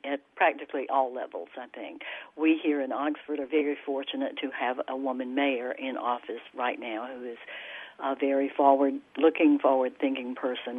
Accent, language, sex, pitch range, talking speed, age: American, English, female, 135-150 Hz, 170 wpm, 60-79